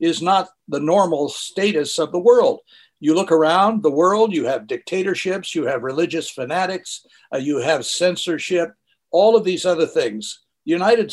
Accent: American